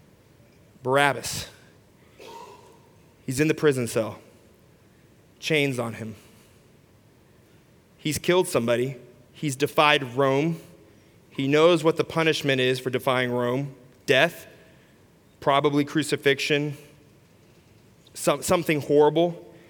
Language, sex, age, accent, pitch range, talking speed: English, male, 30-49, American, 120-145 Hz, 90 wpm